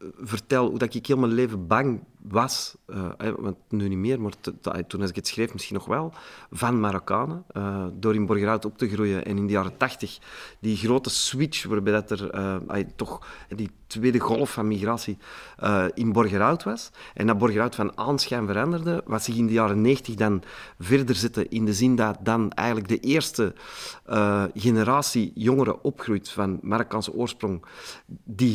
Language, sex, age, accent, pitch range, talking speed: Dutch, male, 40-59, Belgian, 105-130 Hz, 170 wpm